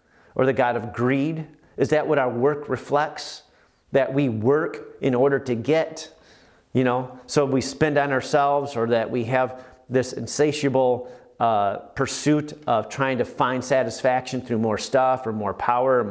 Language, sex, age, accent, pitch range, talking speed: English, male, 40-59, American, 130-165 Hz, 170 wpm